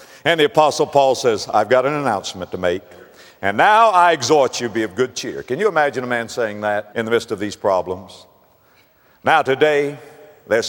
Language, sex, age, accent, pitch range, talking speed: English, male, 60-79, American, 105-170 Hz, 200 wpm